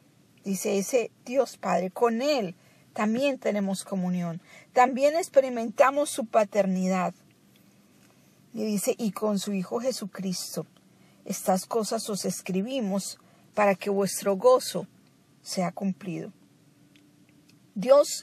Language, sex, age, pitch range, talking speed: Spanish, female, 50-69, 190-255 Hz, 100 wpm